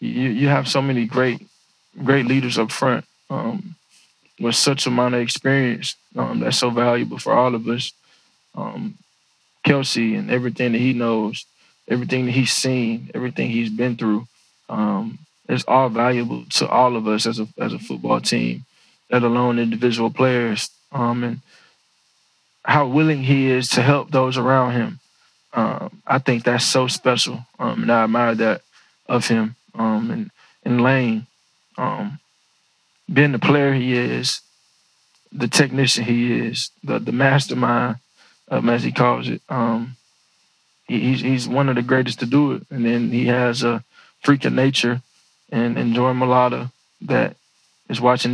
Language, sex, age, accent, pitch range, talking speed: English, male, 20-39, American, 115-135 Hz, 160 wpm